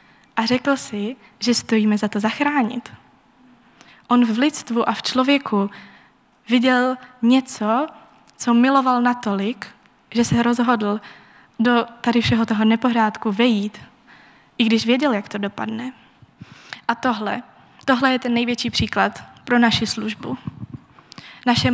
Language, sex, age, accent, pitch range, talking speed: Czech, female, 20-39, native, 210-255 Hz, 125 wpm